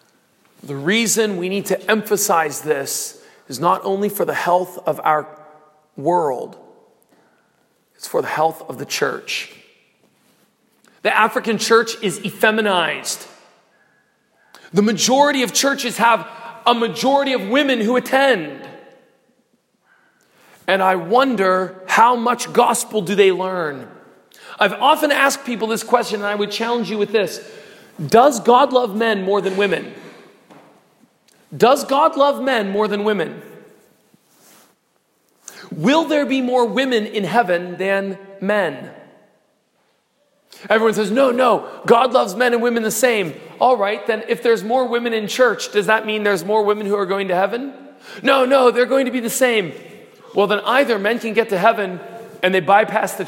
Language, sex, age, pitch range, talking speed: English, male, 40-59, 205-250 Hz, 150 wpm